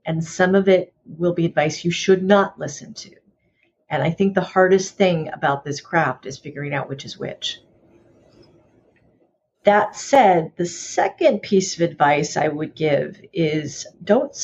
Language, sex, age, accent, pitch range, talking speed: English, female, 40-59, American, 160-195 Hz, 160 wpm